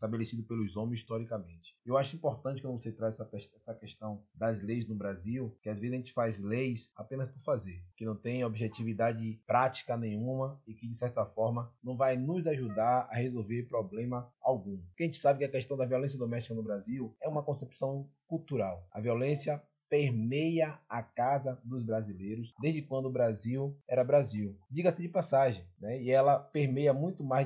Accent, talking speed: Brazilian, 180 wpm